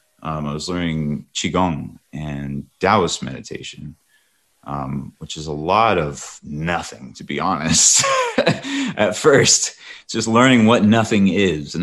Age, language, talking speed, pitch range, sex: 30-49, English, 135 wpm, 75-95 Hz, male